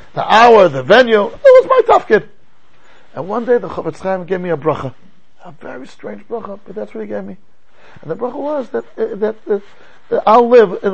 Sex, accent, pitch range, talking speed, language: male, American, 175-220 Hz, 210 wpm, English